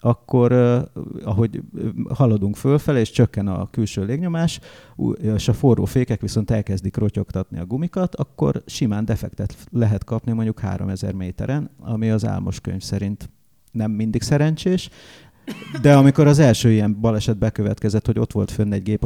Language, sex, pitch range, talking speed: English, male, 105-125 Hz, 150 wpm